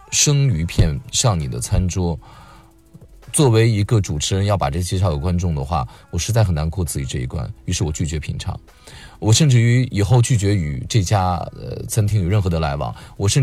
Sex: male